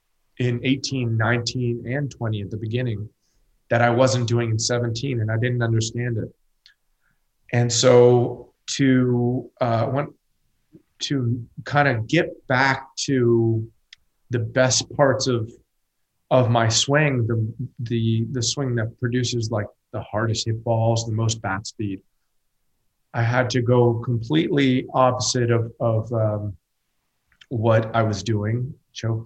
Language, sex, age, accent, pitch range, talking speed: English, male, 30-49, American, 110-130 Hz, 135 wpm